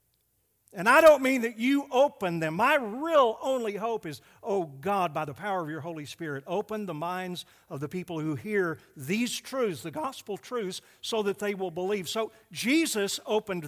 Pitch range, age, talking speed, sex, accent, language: 135-210 Hz, 60-79, 190 wpm, male, American, English